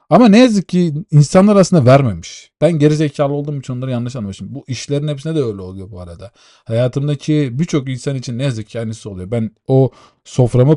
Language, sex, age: Turkish, male, 40-59